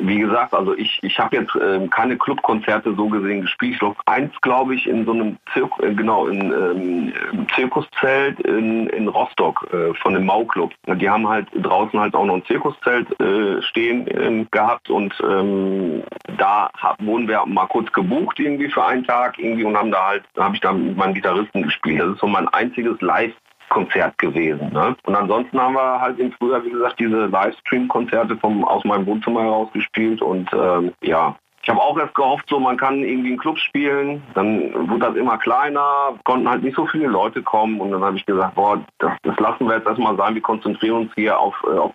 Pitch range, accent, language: 100-125 Hz, German, German